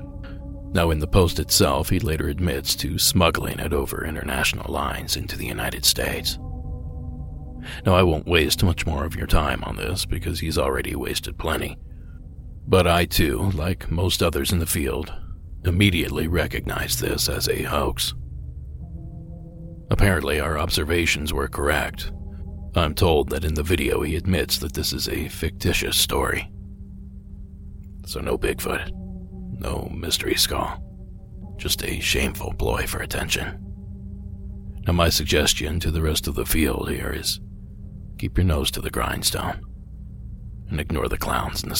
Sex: male